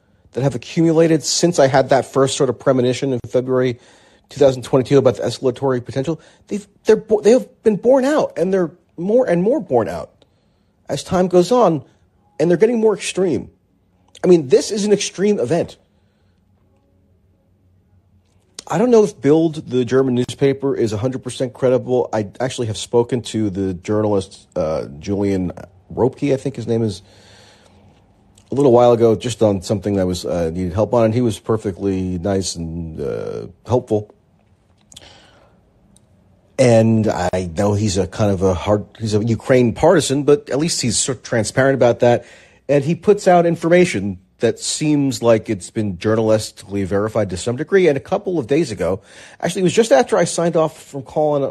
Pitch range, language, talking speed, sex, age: 100-150 Hz, English, 170 wpm, male, 40-59